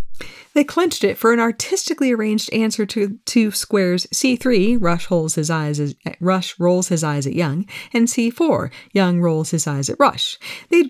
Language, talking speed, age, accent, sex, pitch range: English, 175 wpm, 40-59, American, female, 155-230 Hz